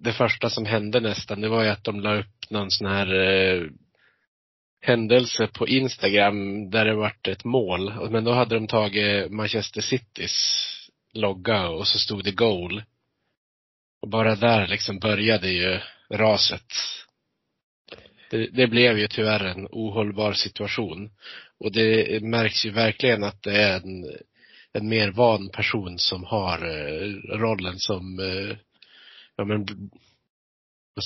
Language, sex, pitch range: Swedish, male, 95-110 Hz